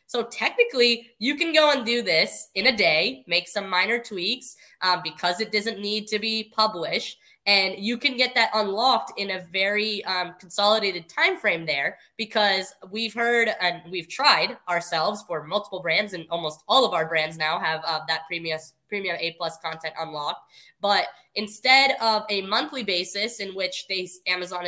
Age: 20-39